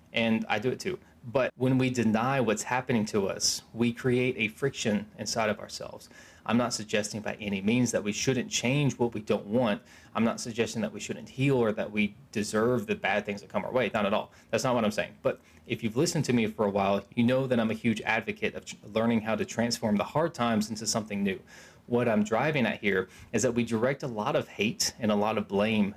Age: 20-39